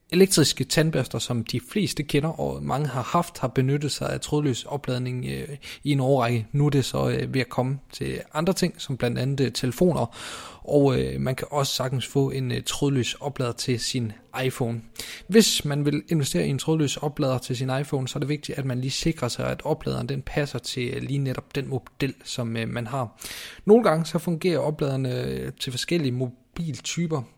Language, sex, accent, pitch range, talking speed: Danish, male, native, 125-155 Hz, 185 wpm